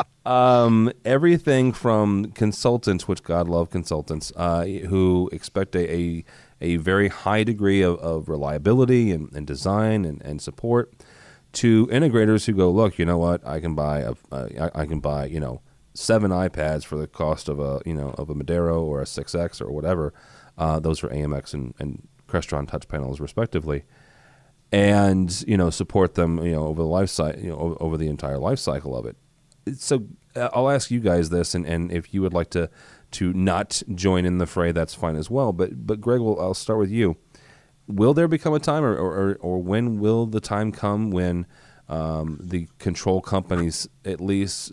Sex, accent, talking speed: male, American, 195 wpm